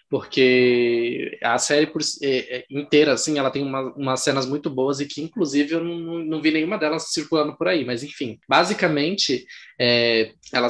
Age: 20-39